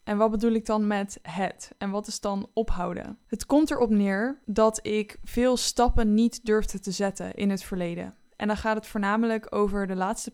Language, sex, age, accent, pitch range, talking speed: English, female, 10-29, Dutch, 200-235 Hz, 205 wpm